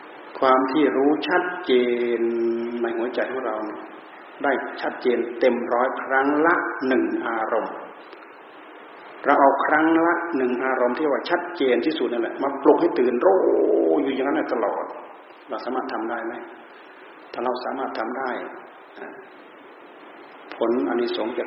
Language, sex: Thai, male